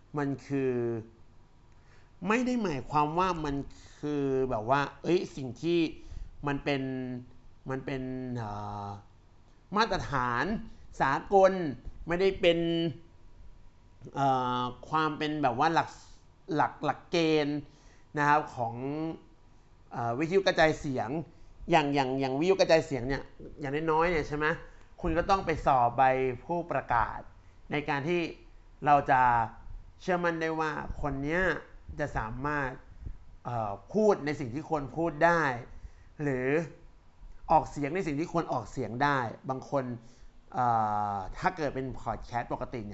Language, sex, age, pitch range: Thai, male, 60-79, 115-155 Hz